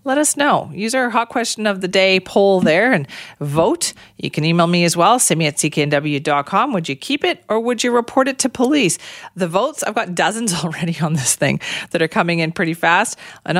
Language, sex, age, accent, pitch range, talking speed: English, female, 40-59, American, 165-220 Hz, 225 wpm